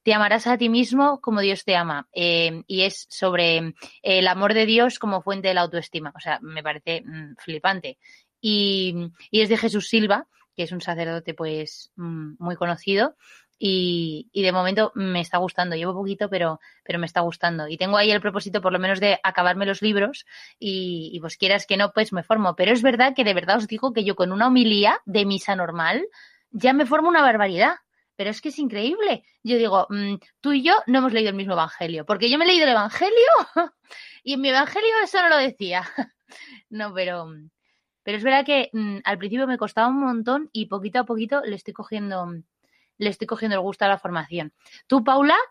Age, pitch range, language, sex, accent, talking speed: 20-39, 180-245 Hz, Spanish, female, Spanish, 205 wpm